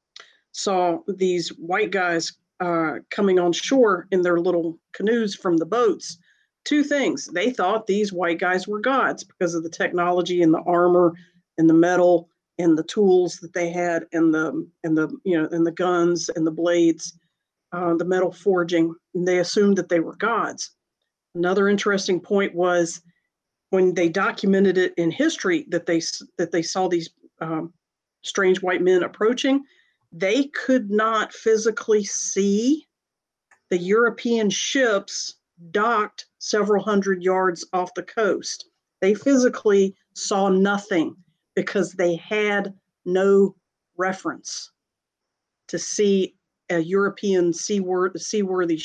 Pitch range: 170-200 Hz